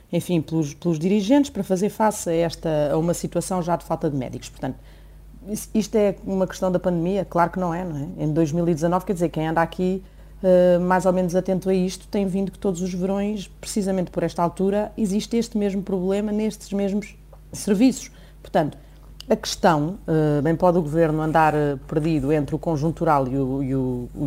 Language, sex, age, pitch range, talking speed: Portuguese, female, 30-49, 160-205 Hz, 185 wpm